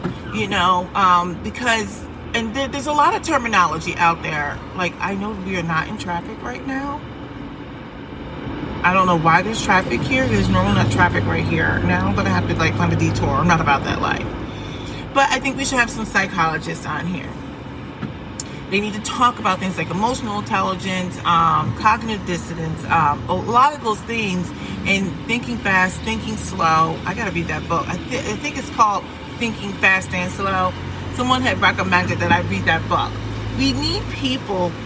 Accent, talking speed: American, 190 wpm